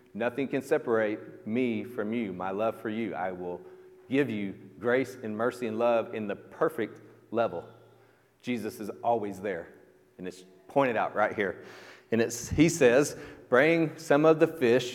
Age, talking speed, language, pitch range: 40-59, 170 wpm, English, 110-140 Hz